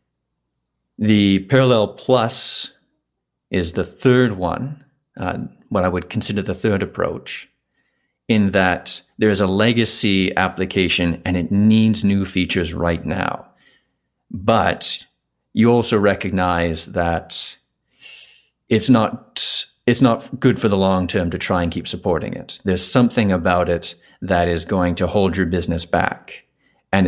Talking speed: 135 wpm